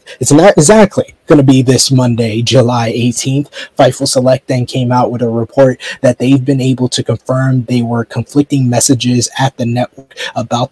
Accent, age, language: American, 20-39, English